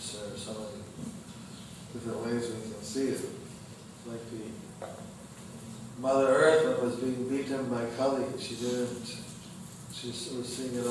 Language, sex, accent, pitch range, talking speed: English, male, American, 115-130 Hz, 140 wpm